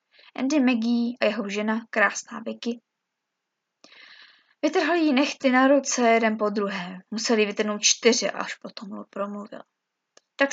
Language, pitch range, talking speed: Czech, 215-265 Hz, 130 wpm